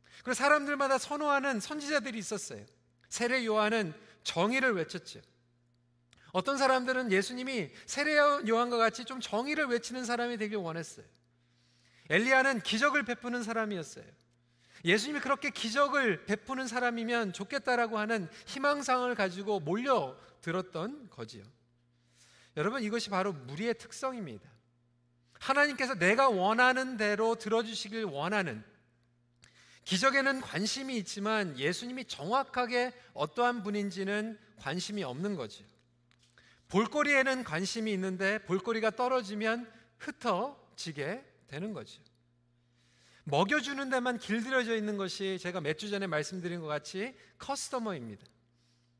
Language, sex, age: Korean, male, 40-59